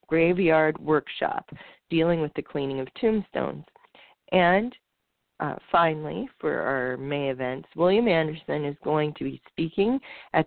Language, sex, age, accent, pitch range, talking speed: English, female, 40-59, American, 135-165 Hz, 130 wpm